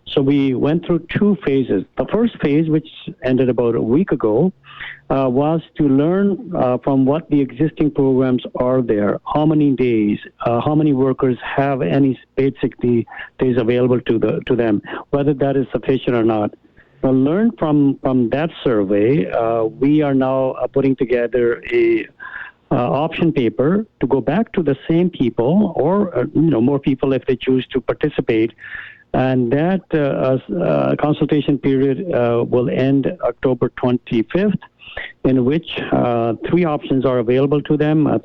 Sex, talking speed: male, 165 wpm